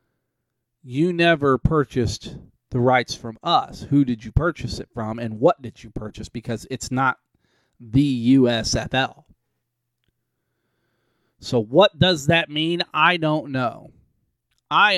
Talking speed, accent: 130 wpm, American